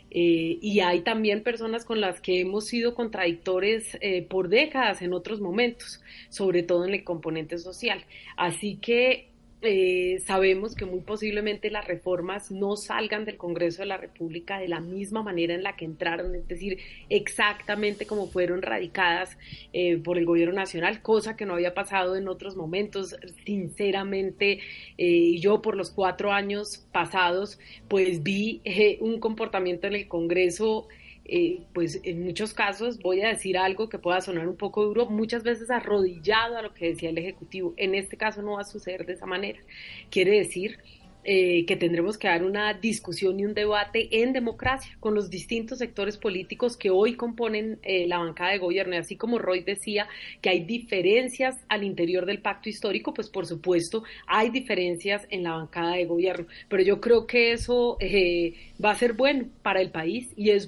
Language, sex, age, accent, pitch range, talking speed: Spanish, female, 30-49, Colombian, 180-220 Hz, 180 wpm